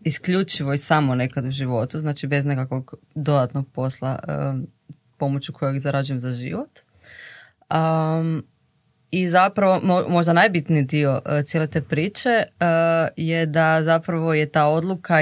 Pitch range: 140-165 Hz